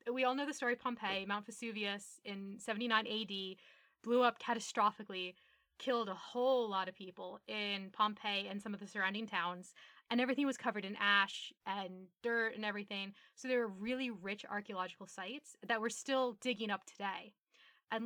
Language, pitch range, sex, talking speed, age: English, 205-255 Hz, female, 175 wpm, 20-39